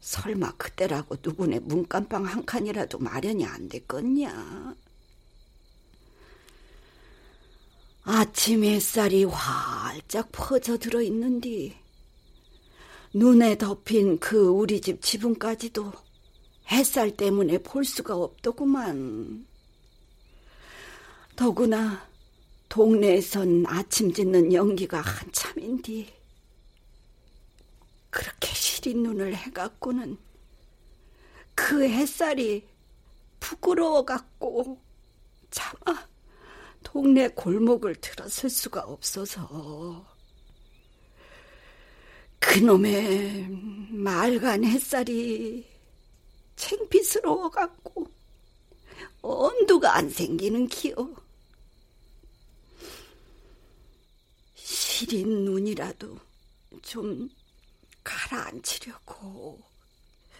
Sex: female